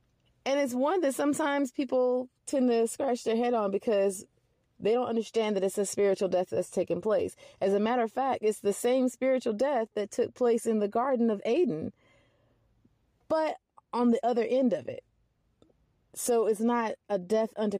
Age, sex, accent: 30-49, female, American